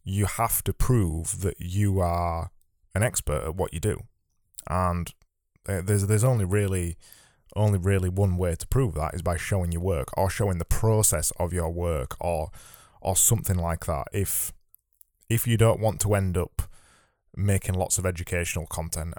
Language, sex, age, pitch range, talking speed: English, male, 20-39, 85-105 Hz, 170 wpm